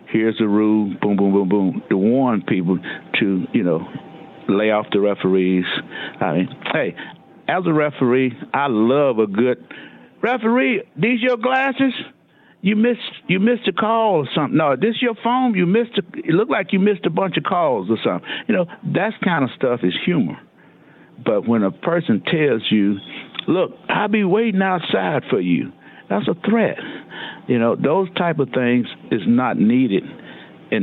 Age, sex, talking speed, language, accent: 60-79, male, 175 wpm, English, American